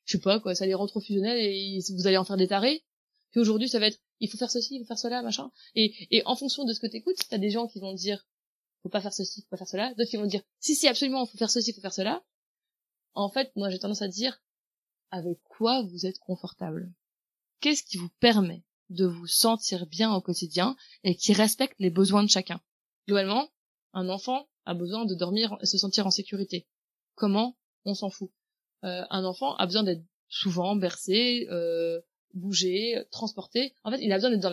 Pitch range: 185-230 Hz